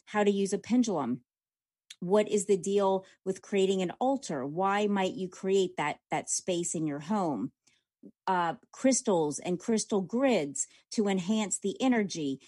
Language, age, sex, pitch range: English, 30-49, female, 175-215 Hz